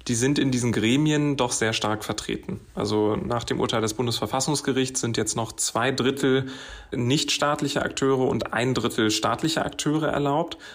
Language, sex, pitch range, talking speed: German, male, 110-135 Hz, 155 wpm